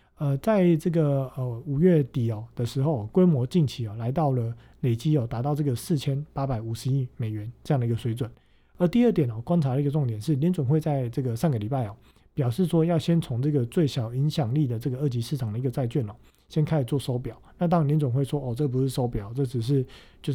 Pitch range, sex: 120-155 Hz, male